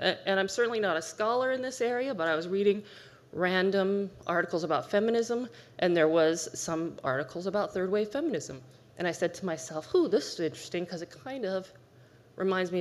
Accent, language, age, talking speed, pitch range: American, English, 30-49, 185 wpm, 155-220 Hz